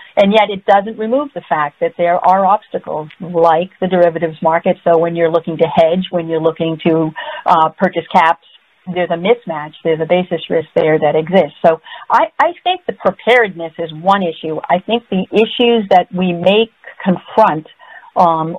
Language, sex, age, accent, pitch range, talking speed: English, female, 50-69, American, 160-190 Hz, 180 wpm